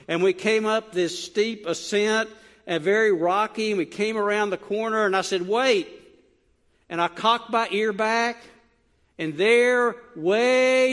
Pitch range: 180-230 Hz